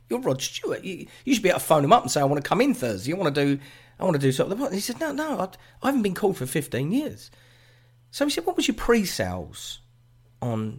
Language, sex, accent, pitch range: English, male, British, 110-150 Hz